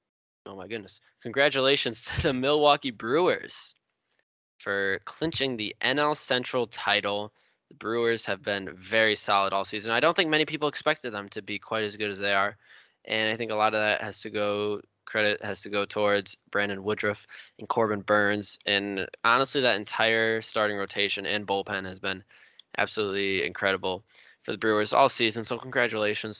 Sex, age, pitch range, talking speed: male, 10-29, 100-120 Hz, 175 wpm